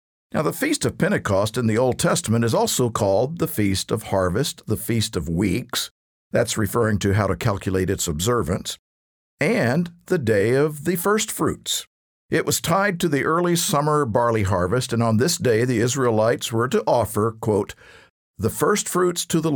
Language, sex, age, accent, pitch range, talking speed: English, male, 50-69, American, 95-145 Hz, 180 wpm